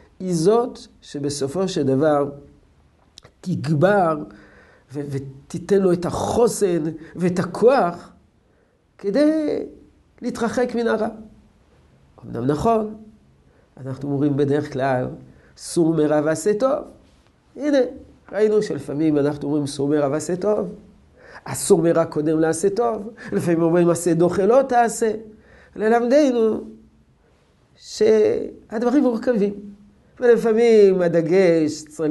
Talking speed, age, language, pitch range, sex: 100 wpm, 50-69, Hebrew, 145-215 Hz, male